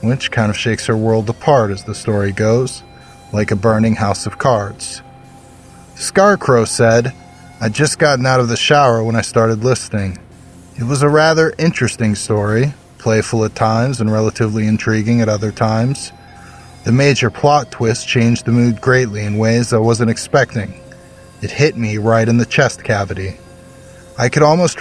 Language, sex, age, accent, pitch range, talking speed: English, male, 20-39, American, 110-125 Hz, 165 wpm